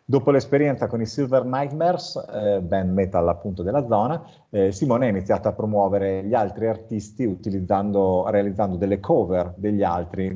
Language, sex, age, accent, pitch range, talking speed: Italian, male, 40-59, native, 95-110 Hz, 155 wpm